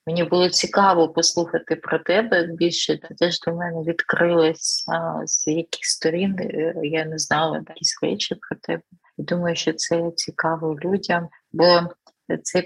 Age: 30-49